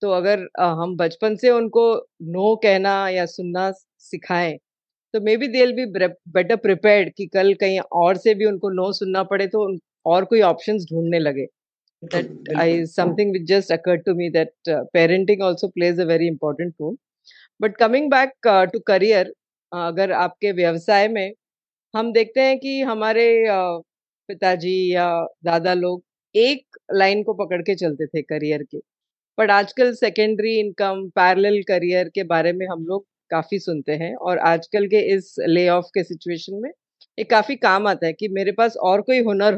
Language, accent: Hindi, native